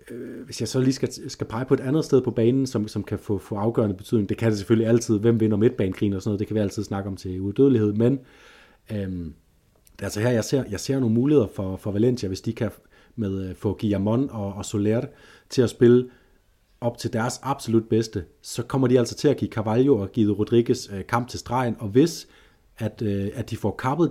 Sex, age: male, 30-49